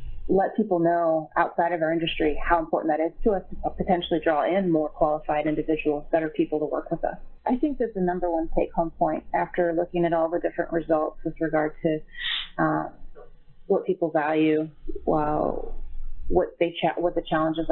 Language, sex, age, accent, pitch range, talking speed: English, female, 30-49, American, 155-175 Hz, 195 wpm